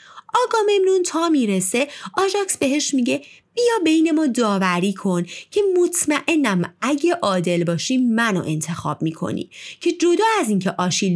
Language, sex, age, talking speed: Persian, female, 30-49, 135 wpm